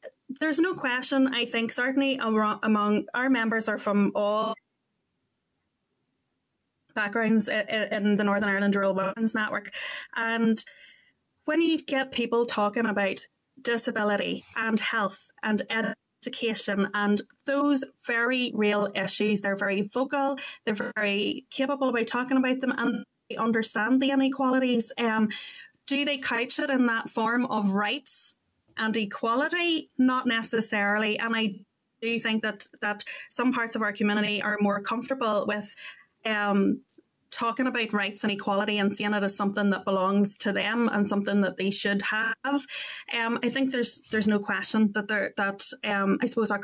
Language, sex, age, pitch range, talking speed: English, female, 30-49, 205-250 Hz, 150 wpm